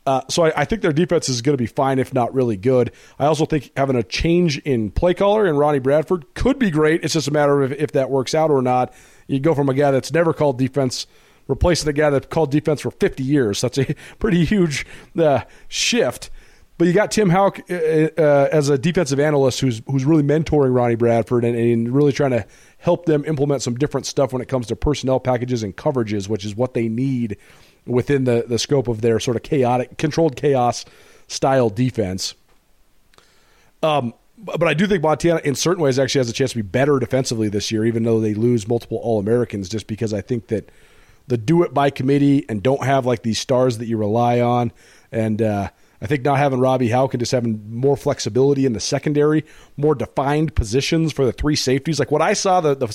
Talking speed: 220 wpm